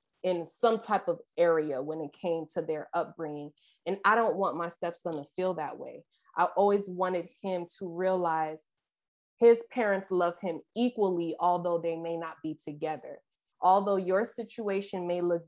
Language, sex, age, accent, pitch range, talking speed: English, female, 20-39, American, 165-205 Hz, 165 wpm